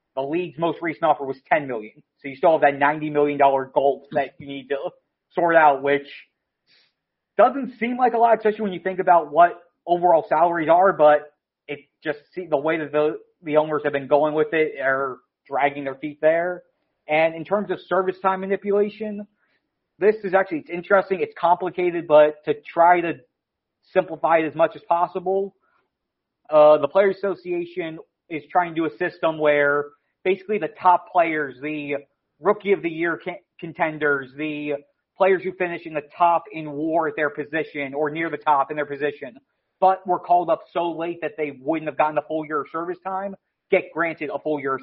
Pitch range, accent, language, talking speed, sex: 150-180 Hz, American, English, 190 wpm, male